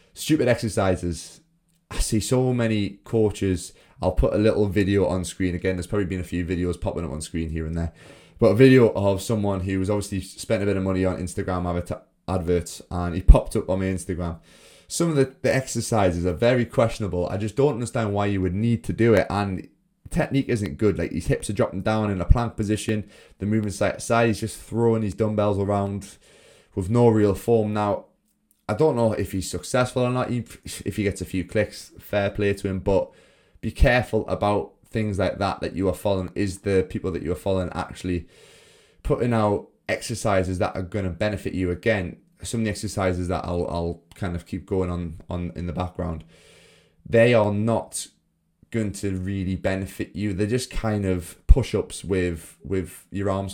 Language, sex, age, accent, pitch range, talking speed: English, male, 20-39, British, 90-110 Hz, 200 wpm